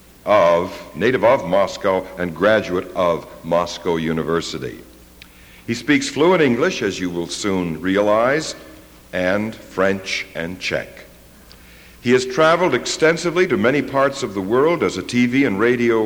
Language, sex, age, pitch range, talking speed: English, male, 60-79, 90-125 Hz, 140 wpm